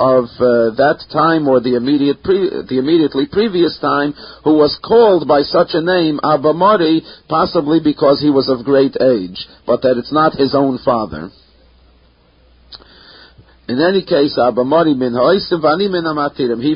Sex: male